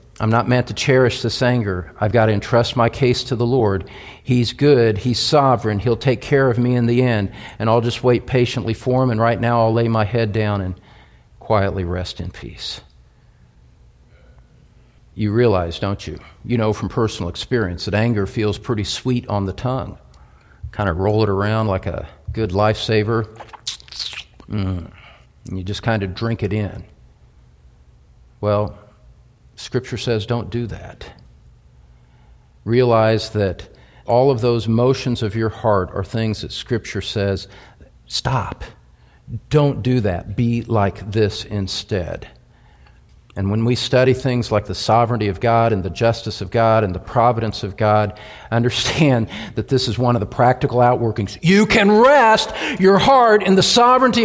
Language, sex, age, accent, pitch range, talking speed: English, male, 50-69, American, 100-125 Hz, 165 wpm